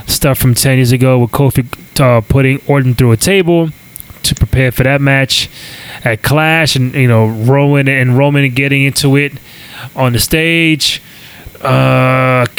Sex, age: male, 20-39